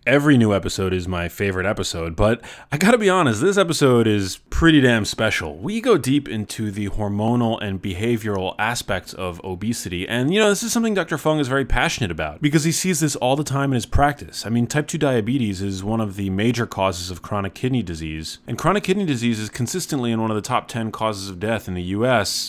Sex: male